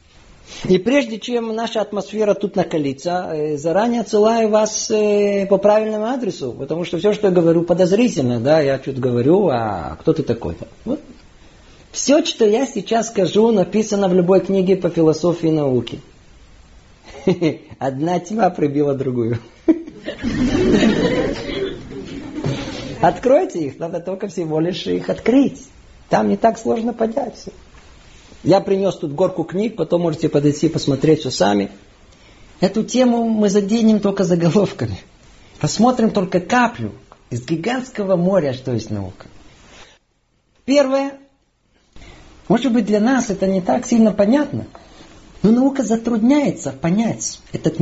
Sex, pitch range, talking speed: male, 150-225 Hz, 125 wpm